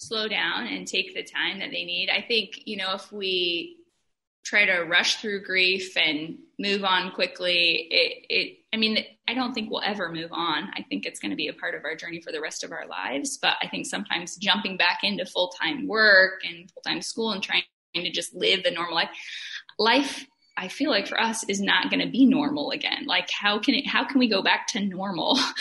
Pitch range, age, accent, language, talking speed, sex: 190-275 Hz, 10-29, American, English, 225 wpm, female